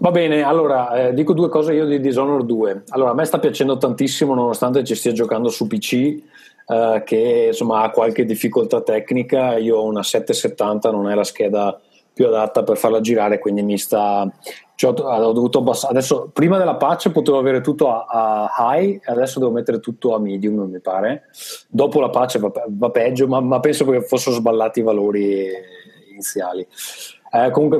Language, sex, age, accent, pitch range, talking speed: Italian, male, 30-49, native, 105-140 Hz, 185 wpm